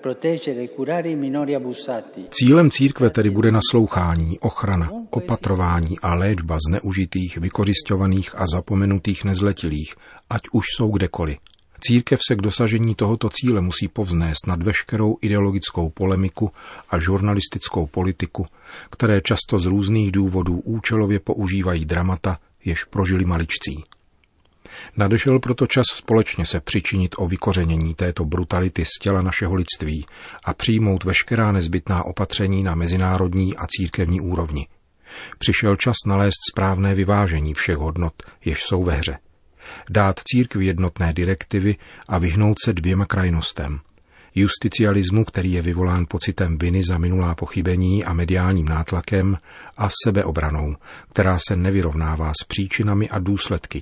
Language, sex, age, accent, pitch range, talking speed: Czech, male, 40-59, native, 85-105 Hz, 120 wpm